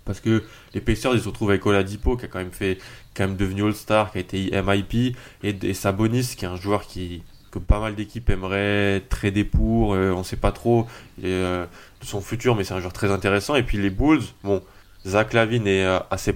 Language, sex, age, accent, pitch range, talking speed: French, male, 20-39, French, 95-110 Hz, 230 wpm